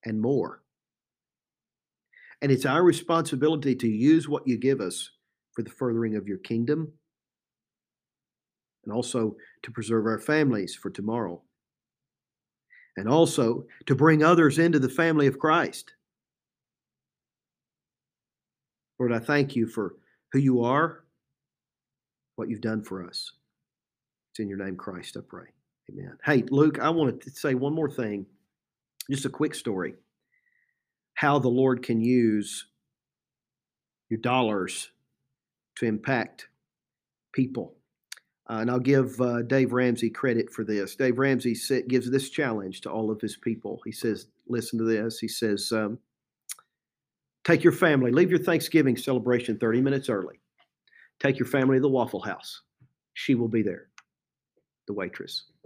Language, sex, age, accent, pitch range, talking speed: English, male, 50-69, American, 115-145 Hz, 140 wpm